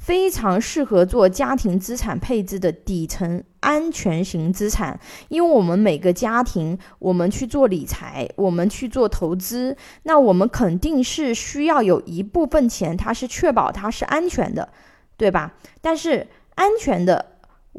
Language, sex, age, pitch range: Chinese, female, 20-39, 190-270 Hz